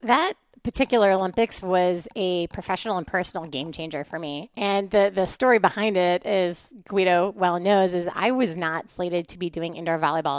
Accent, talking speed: American, 185 wpm